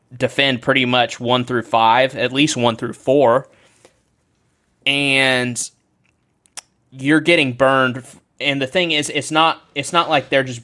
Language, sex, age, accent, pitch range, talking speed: English, male, 20-39, American, 115-145 Hz, 145 wpm